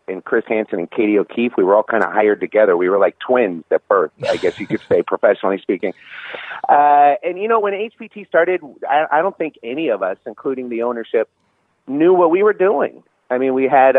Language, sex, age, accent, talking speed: English, male, 30-49, American, 225 wpm